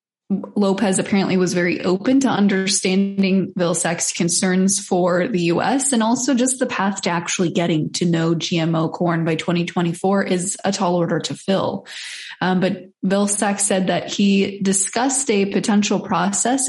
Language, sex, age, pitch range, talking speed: English, female, 20-39, 180-220 Hz, 150 wpm